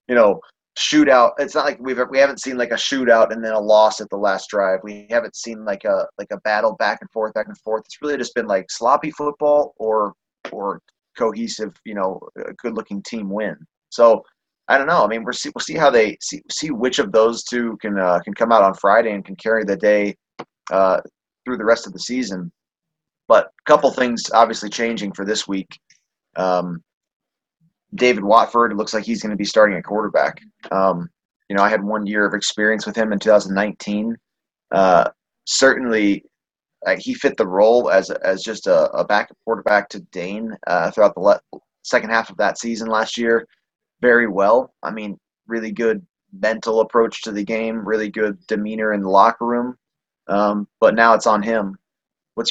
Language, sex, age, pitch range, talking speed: English, male, 30-49, 100-115 Hz, 200 wpm